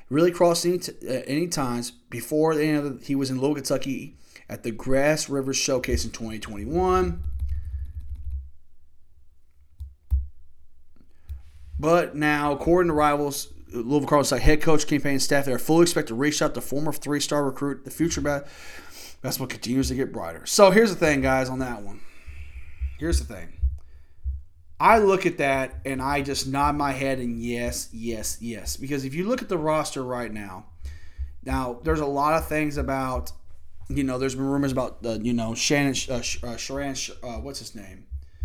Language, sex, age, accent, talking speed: English, male, 30-49, American, 170 wpm